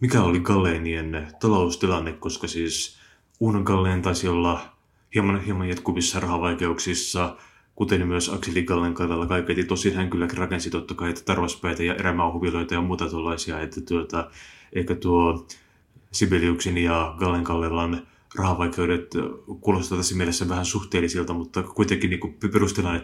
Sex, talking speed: male, 130 wpm